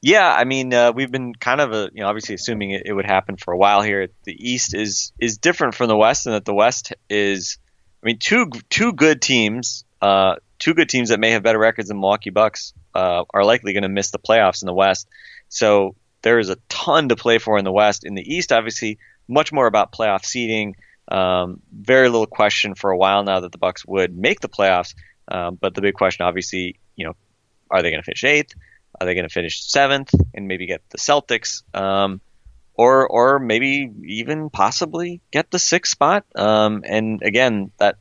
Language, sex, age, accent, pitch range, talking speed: English, male, 20-39, American, 100-120 Hz, 215 wpm